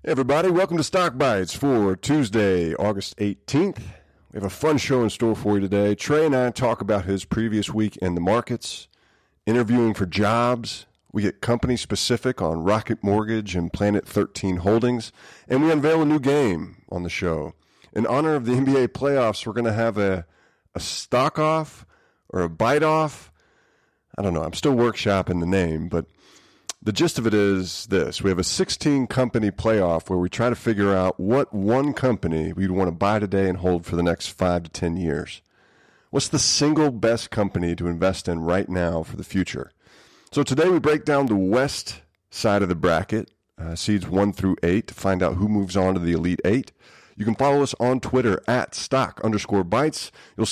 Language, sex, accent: English, male, American